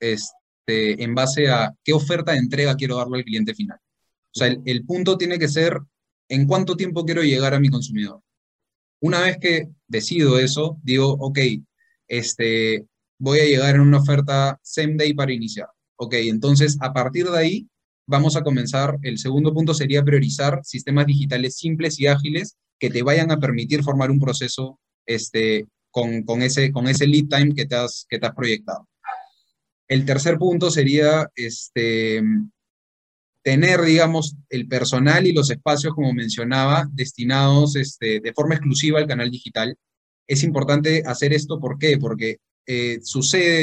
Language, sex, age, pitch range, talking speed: Spanish, male, 20-39, 120-150 Hz, 165 wpm